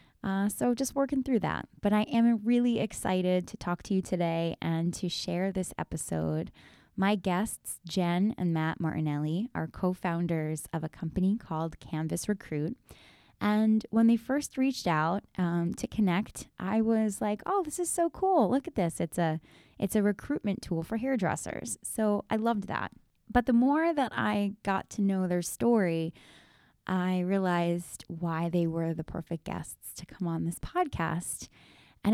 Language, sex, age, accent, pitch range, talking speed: English, female, 20-39, American, 170-220 Hz, 170 wpm